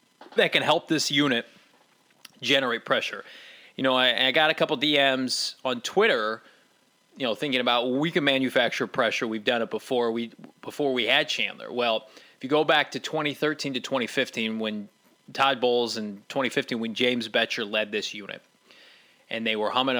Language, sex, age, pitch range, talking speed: English, male, 20-39, 115-135 Hz, 175 wpm